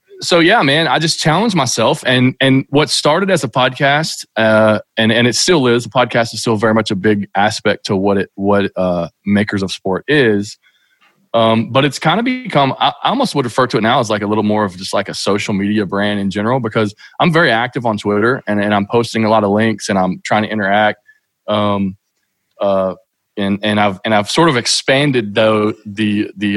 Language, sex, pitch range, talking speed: English, male, 105-130 Hz, 220 wpm